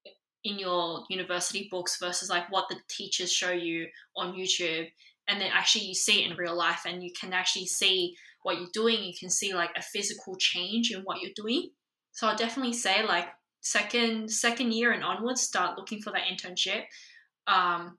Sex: female